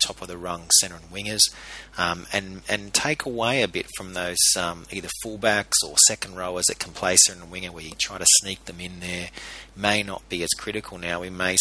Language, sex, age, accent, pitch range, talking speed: English, male, 30-49, Australian, 85-100 Hz, 230 wpm